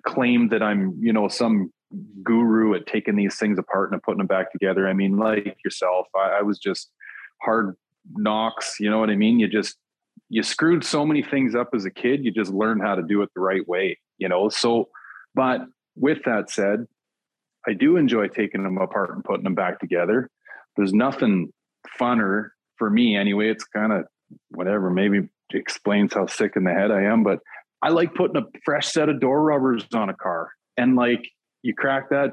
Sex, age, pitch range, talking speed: male, 30-49, 105-140 Hz, 200 wpm